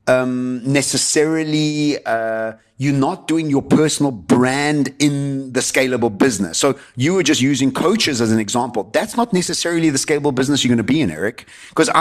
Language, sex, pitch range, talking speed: English, male, 110-150 Hz, 175 wpm